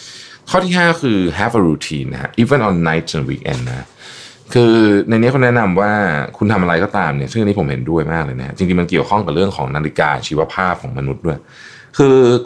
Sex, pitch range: male, 85-125 Hz